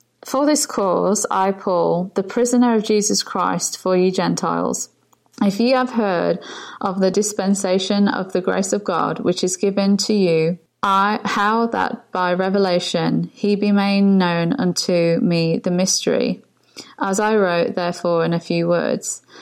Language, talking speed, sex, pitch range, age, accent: English, 160 wpm, female, 175-210 Hz, 20-39, British